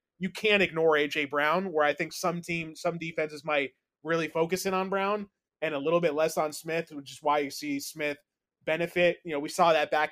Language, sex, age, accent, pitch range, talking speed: English, male, 20-39, American, 155-190 Hz, 225 wpm